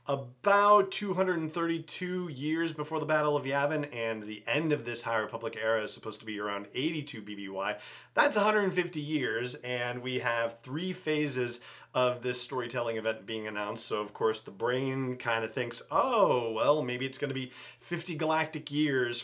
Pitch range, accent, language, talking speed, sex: 115-155 Hz, American, English, 170 wpm, male